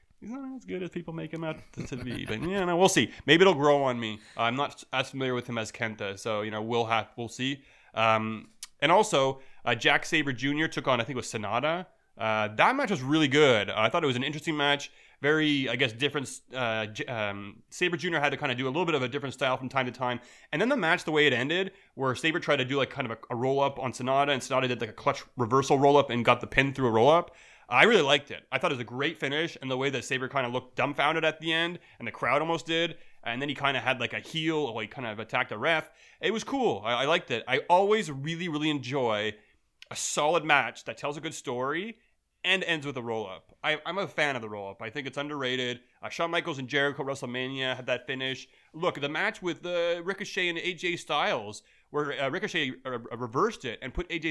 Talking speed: 255 wpm